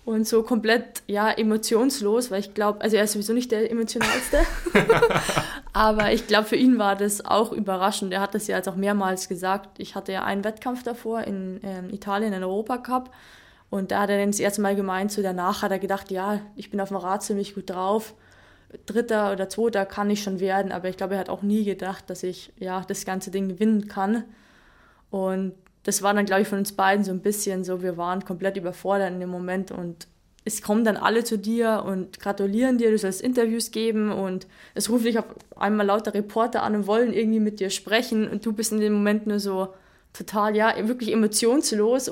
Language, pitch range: German, 195-220 Hz